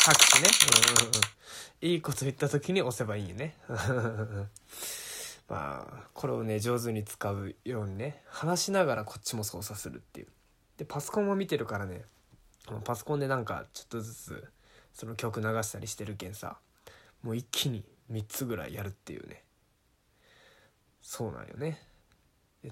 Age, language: 20-39, Japanese